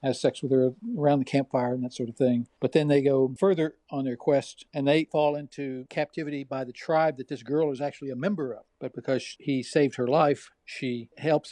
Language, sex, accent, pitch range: English, male, American, 125-145 Hz